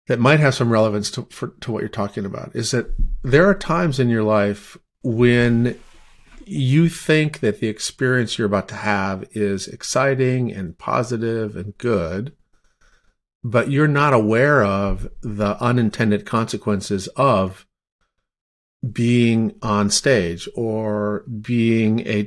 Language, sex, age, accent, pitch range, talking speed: English, male, 50-69, American, 105-125 Hz, 135 wpm